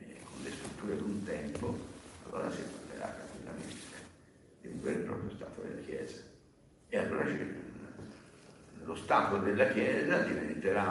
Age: 60-79